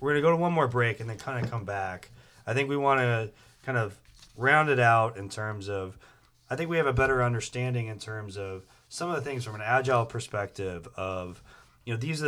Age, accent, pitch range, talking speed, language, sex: 30-49, American, 100-125 Hz, 245 wpm, English, male